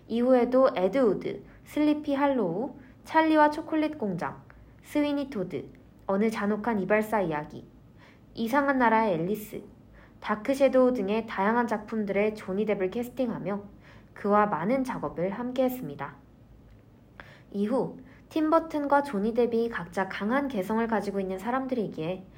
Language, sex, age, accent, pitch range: Korean, female, 20-39, native, 185-270 Hz